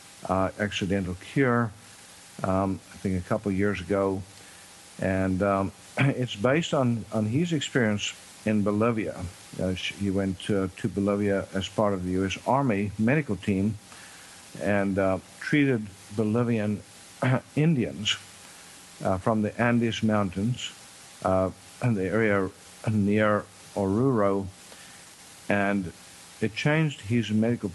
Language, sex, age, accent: English, male, 50-69, American